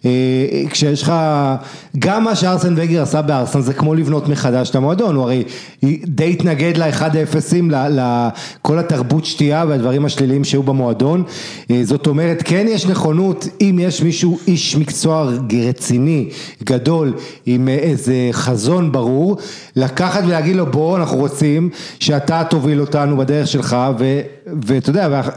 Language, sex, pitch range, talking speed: English, male, 135-180 Hz, 130 wpm